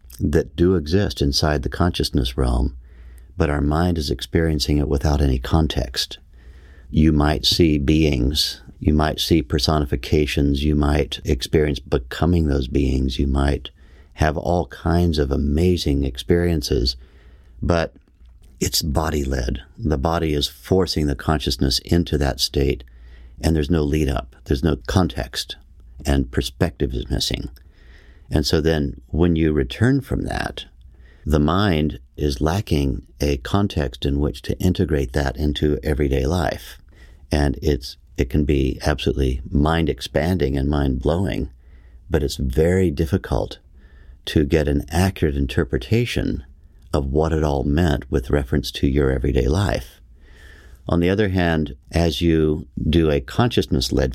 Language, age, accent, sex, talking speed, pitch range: English, 60-79, American, male, 135 wpm, 70-80 Hz